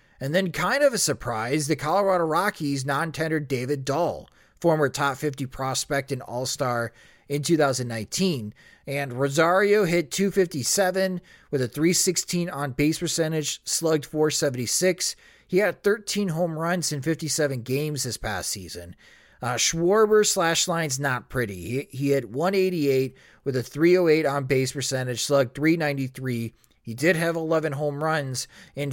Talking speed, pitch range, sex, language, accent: 145 wpm, 130-165 Hz, male, English, American